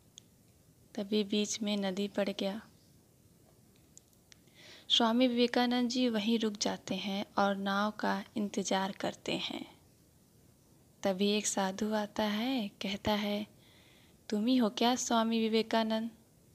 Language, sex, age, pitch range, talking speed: Hindi, female, 20-39, 205-235 Hz, 110 wpm